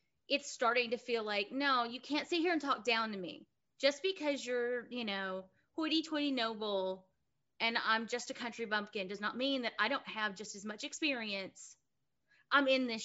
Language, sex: English, female